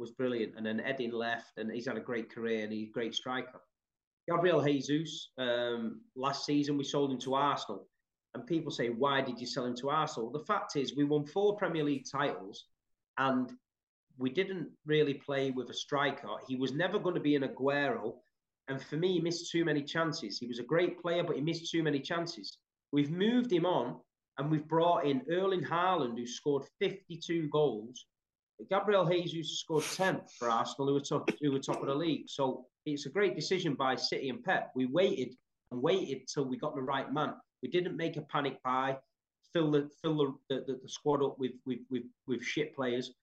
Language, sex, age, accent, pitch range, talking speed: English, male, 30-49, British, 130-160 Hz, 210 wpm